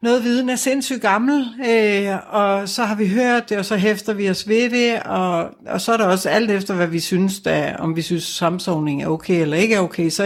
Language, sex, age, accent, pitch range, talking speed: Danish, female, 60-79, native, 165-200 Hz, 235 wpm